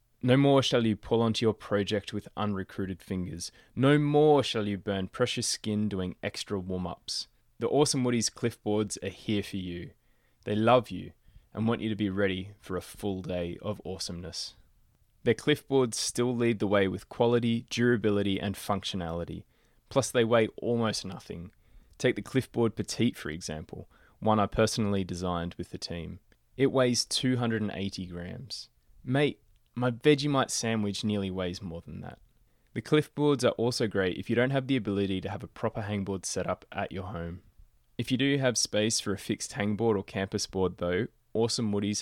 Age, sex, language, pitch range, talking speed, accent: 20-39, male, English, 95-120 Hz, 175 wpm, Australian